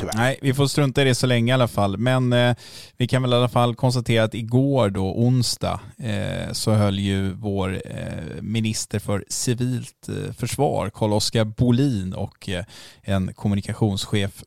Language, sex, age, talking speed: Swedish, male, 20-39, 170 wpm